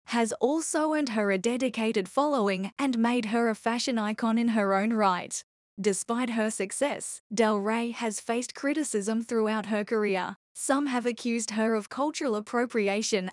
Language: English